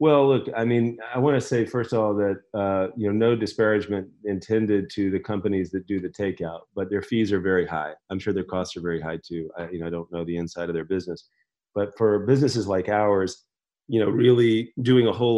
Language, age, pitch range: English, 40-59, 90-110 Hz